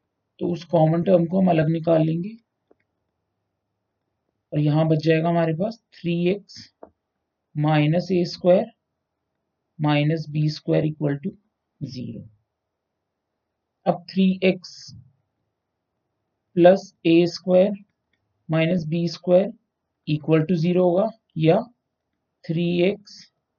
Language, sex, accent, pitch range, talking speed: Hindi, male, native, 145-185 Hz, 100 wpm